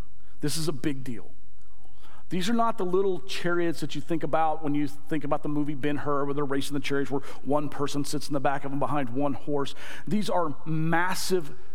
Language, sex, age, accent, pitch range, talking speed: English, male, 40-59, American, 135-180 Hz, 215 wpm